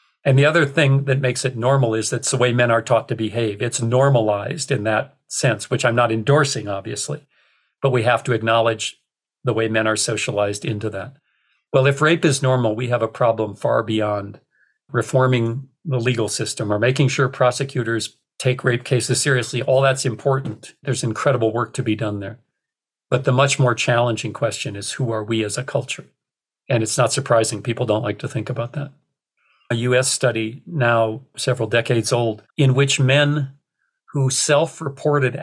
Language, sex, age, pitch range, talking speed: English, male, 50-69, 115-140 Hz, 185 wpm